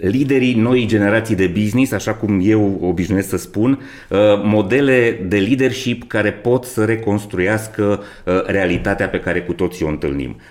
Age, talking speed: 30-49, 145 wpm